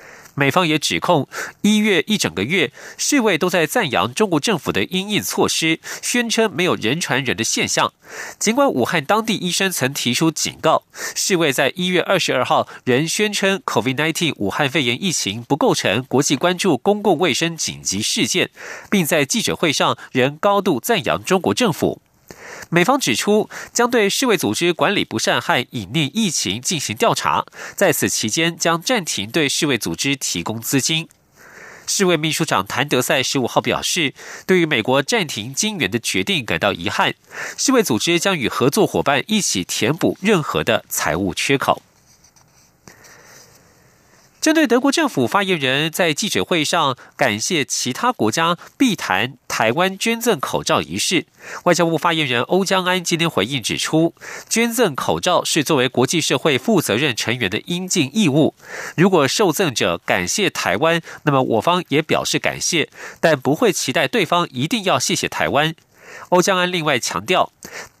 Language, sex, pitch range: German, male, 140-200 Hz